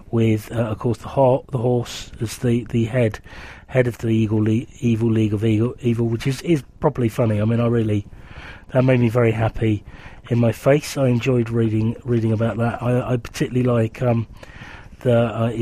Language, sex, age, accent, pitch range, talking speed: English, male, 30-49, British, 115-135 Hz, 200 wpm